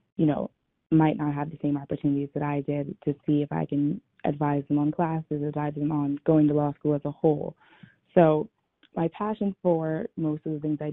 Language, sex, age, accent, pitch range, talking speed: English, female, 20-39, American, 140-155 Hz, 215 wpm